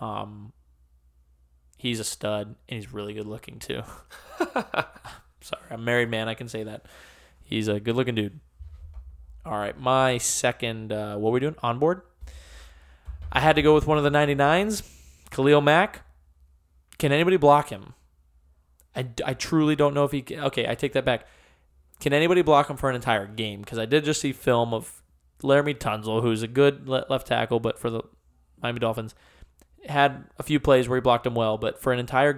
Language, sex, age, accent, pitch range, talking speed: English, male, 20-39, American, 90-130 Hz, 190 wpm